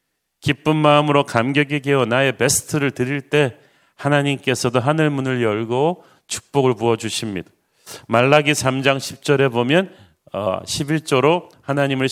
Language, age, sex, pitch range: Korean, 40-59, male, 115-150 Hz